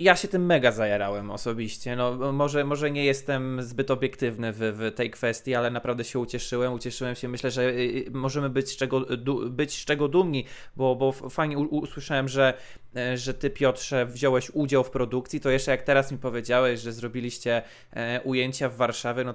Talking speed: 170 wpm